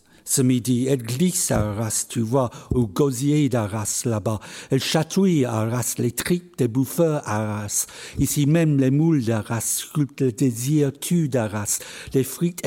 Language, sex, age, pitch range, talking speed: French, male, 60-79, 115-150 Hz, 160 wpm